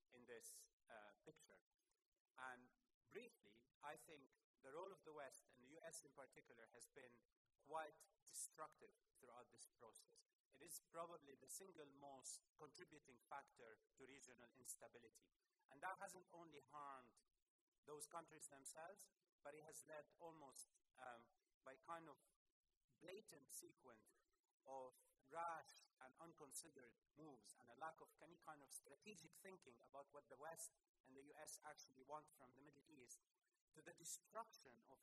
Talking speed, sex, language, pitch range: 145 wpm, male, English, 140-180 Hz